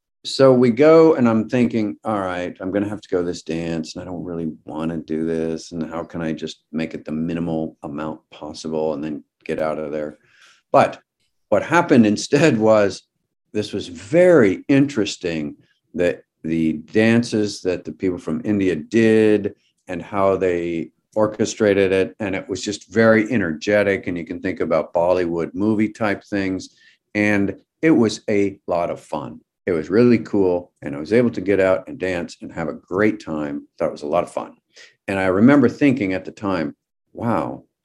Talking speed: 190 wpm